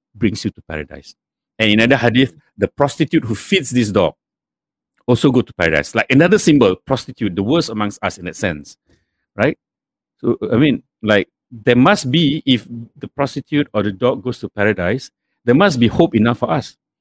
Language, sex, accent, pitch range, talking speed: English, male, Malaysian, 95-130 Hz, 185 wpm